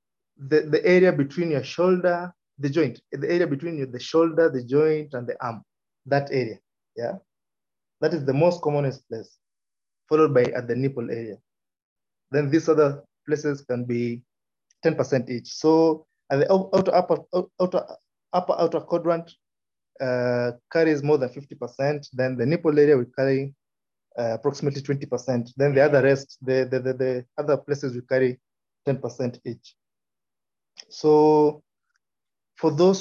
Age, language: 30-49, English